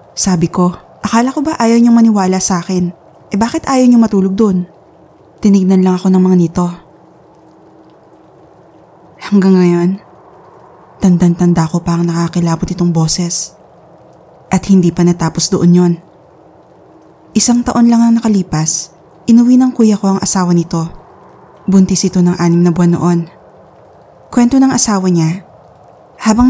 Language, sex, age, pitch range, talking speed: Filipino, female, 20-39, 175-215 Hz, 140 wpm